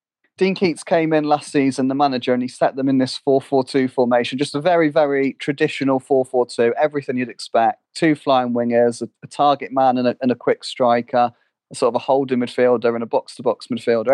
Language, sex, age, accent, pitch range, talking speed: English, male, 30-49, British, 125-150 Hz, 195 wpm